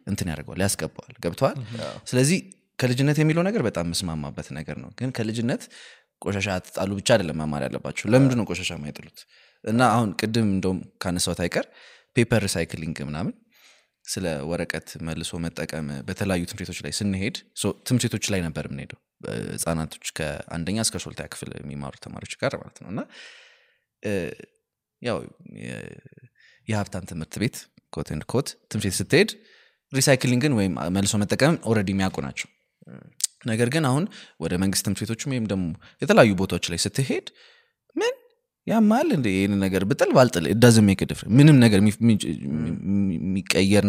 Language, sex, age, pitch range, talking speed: Amharic, male, 20-39, 85-125 Hz, 80 wpm